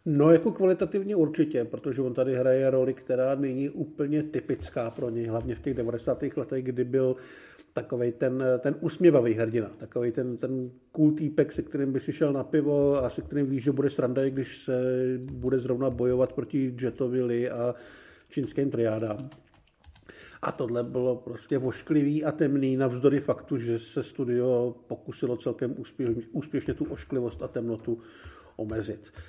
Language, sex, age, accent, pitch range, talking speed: Czech, male, 50-69, native, 120-145 Hz, 155 wpm